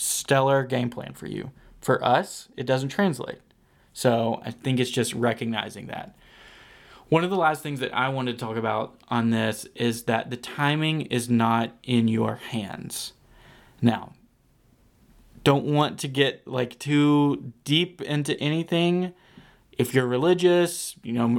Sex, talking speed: male, 150 wpm